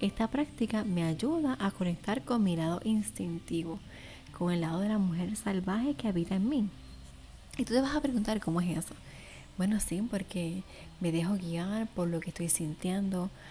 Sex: female